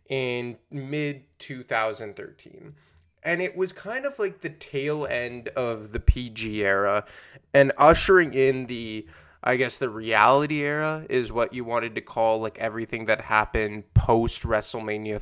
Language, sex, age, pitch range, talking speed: English, male, 20-39, 110-140 Hz, 140 wpm